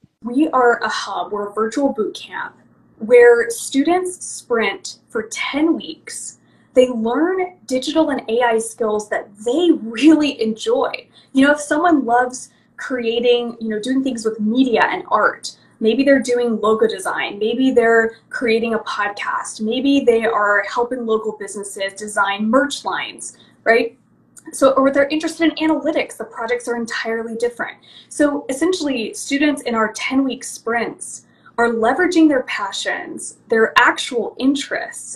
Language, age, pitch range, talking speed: English, 20-39, 225-295 Hz, 145 wpm